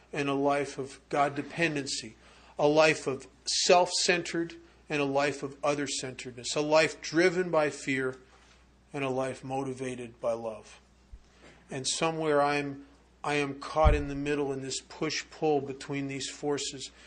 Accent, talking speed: American, 145 wpm